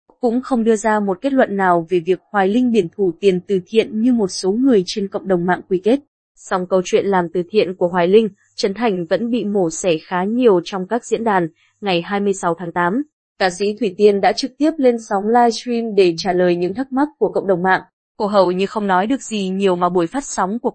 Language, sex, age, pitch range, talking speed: Vietnamese, female, 20-39, 185-235 Hz, 245 wpm